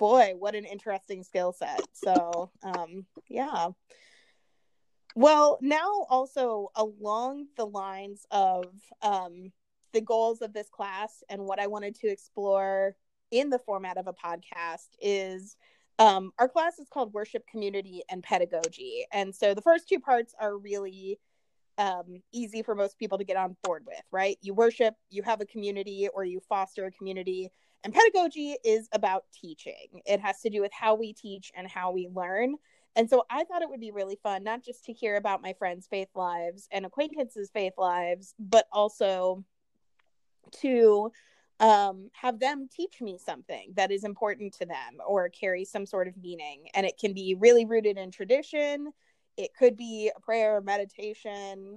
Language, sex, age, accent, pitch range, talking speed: English, female, 30-49, American, 190-230 Hz, 170 wpm